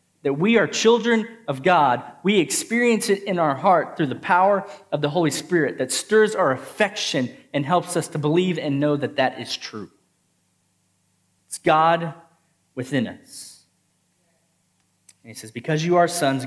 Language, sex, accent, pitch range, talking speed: English, male, American, 145-195 Hz, 165 wpm